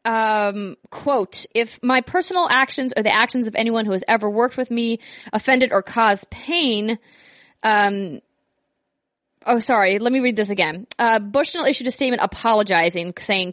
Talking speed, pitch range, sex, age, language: 160 wpm, 200-250 Hz, female, 20-39, English